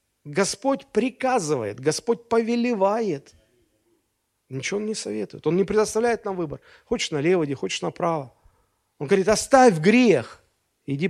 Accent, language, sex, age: native, Russian, male, 40-59